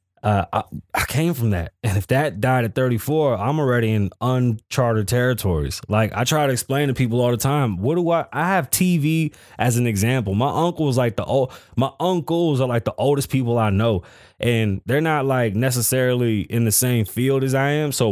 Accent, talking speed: American, 210 wpm